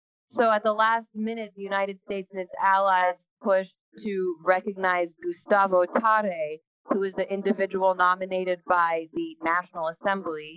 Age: 20-39